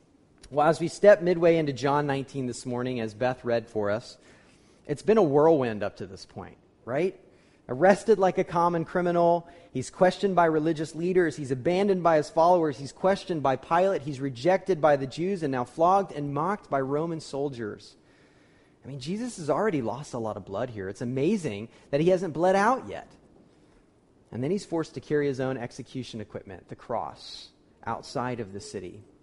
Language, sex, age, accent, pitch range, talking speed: English, male, 30-49, American, 115-165 Hz, 185 wpm